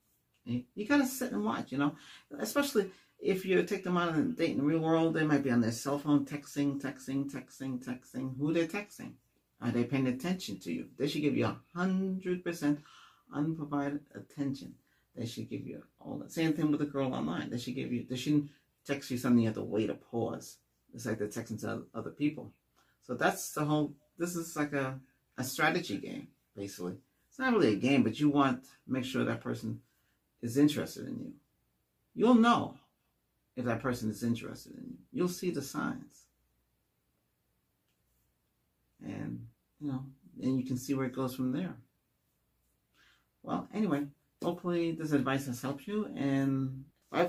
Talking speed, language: 185 wpm, English